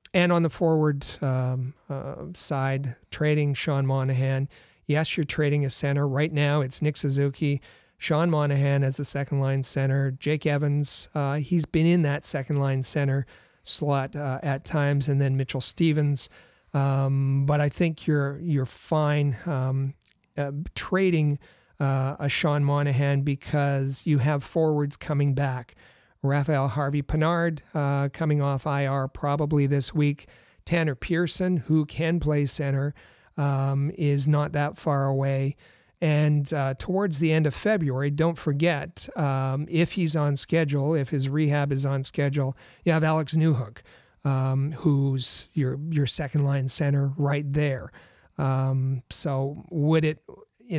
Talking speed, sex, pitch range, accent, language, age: 145 wpm, male, 135-155 Hz, American, English, 40-59